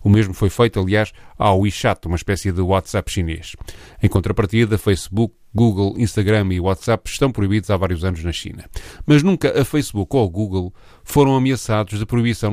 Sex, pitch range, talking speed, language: male, 100-120 Hz, 175 wpm, Portuguese